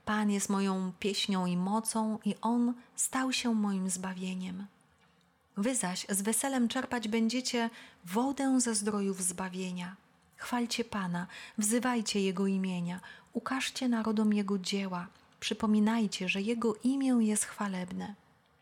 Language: Polish